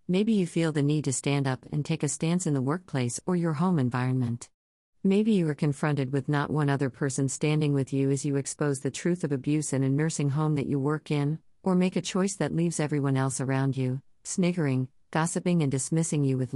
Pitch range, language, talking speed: 130-155 Hz, English, 225 wpm